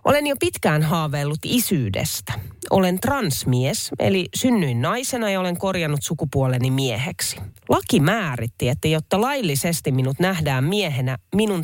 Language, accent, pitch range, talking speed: Finnish, native, 130-190 Hz, 125 wpm